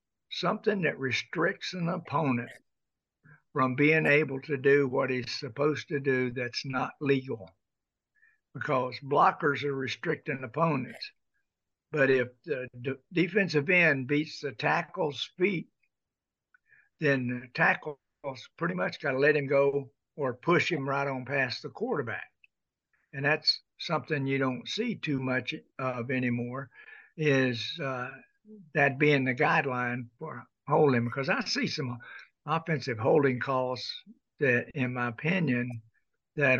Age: 60-79